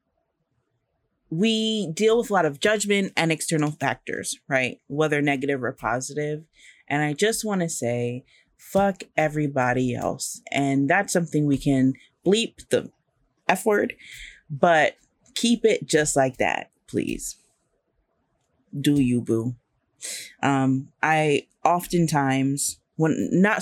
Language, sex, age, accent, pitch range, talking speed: English, female, 30-49, American, 135-165 Hz, 120 wpm